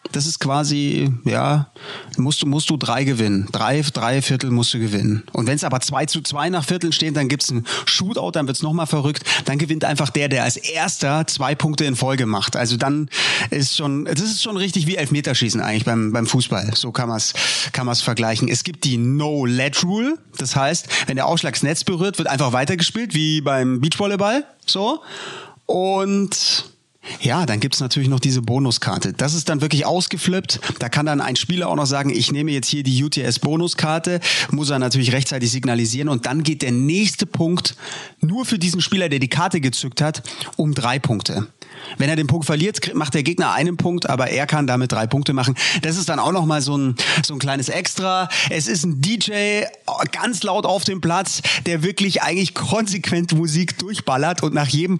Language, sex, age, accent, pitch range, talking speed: German, male, 30-49, German, 135-170 Hz, 200 wpm